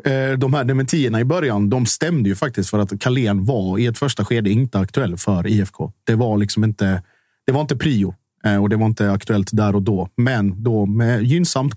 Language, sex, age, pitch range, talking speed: Swedish, male, 30-49, 100-125 Hz, 210 wpm